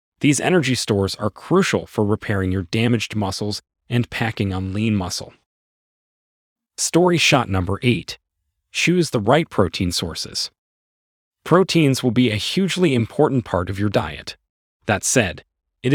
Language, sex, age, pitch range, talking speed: English, male, 30-49, 95-130 Hz, 140 wpm